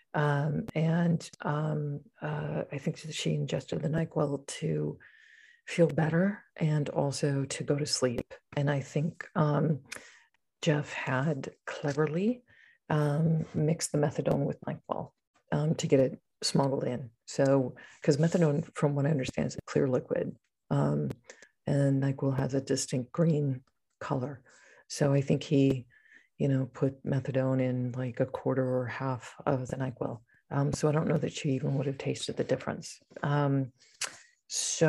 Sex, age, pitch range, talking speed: female, 40-59, 140-155 Hz, 155 wpm